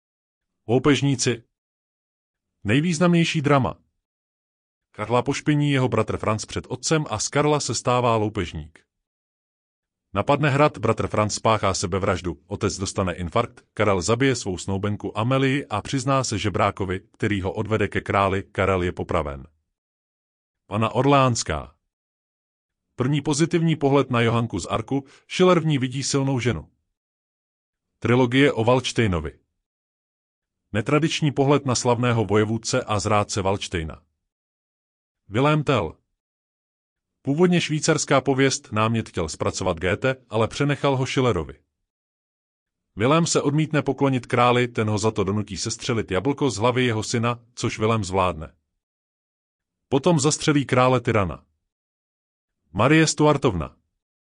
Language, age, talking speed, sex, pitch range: Czech, 30-49, 115 wpm, male, 95-135 Hz